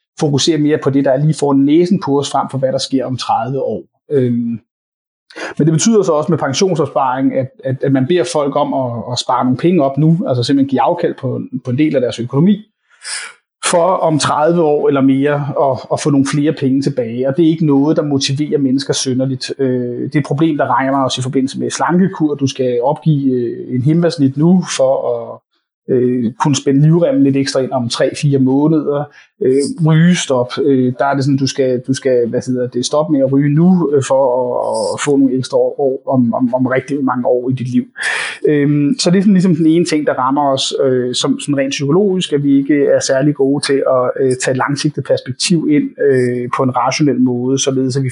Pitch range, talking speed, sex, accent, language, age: 130-155 Hz, 210 wpm, male, native, Danish, 30-49